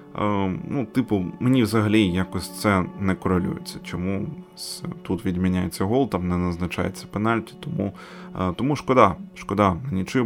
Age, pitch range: 20-39, 95-130 Hz